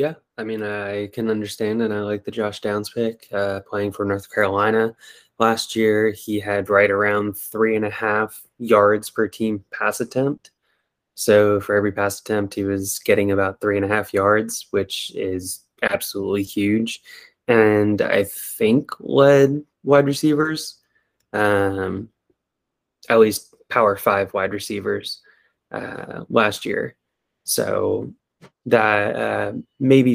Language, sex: English, male